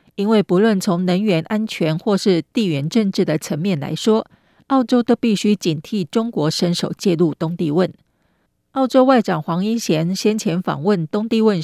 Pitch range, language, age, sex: 170-220 Hz, Chinese, 40-59, female